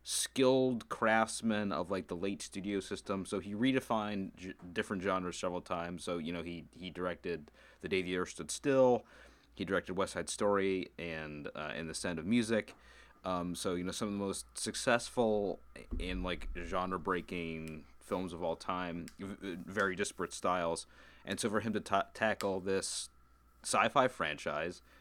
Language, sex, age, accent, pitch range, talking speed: English, male, 30-49, American, 85-105 Hz, 165 wpm